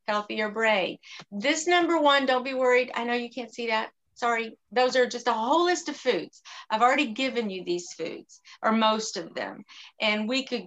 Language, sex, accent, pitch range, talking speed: English, female, American, 200-245 Hz, 205 wpm